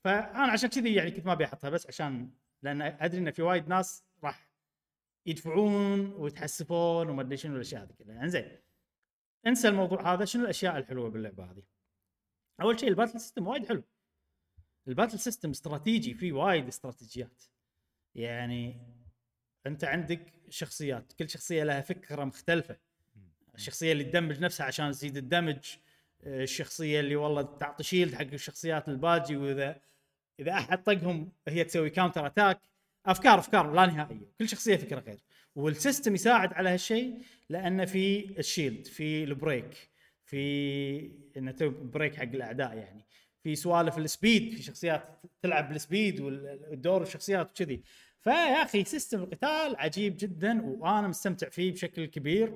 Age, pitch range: 30-49, 140-185 Hz